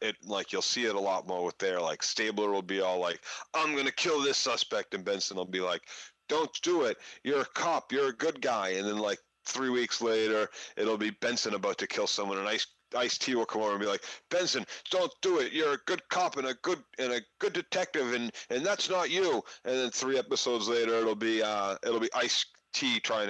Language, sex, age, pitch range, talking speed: English, male, 40-59, 115-180 Hz, 235 wpm